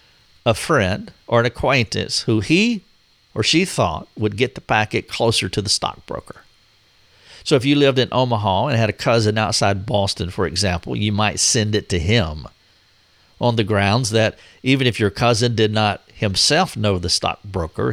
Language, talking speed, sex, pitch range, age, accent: English, 175 wpm, male, 100-125 Hz, 50-69, American